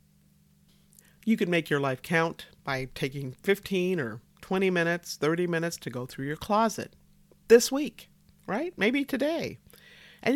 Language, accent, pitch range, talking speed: English, American, 150-215 Hz, 145 wpm